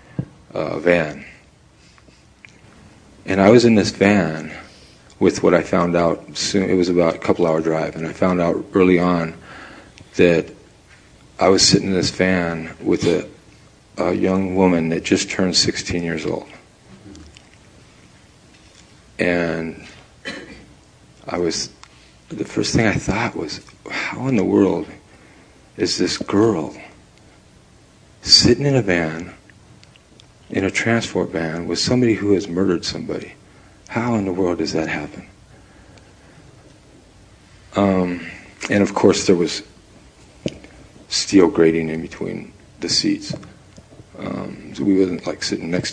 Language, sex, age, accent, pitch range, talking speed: English, male, 40-59, American, 85-100 Hz, 130 wpm